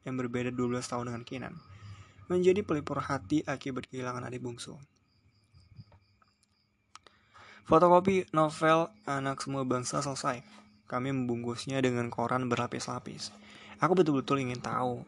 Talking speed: 110 wpm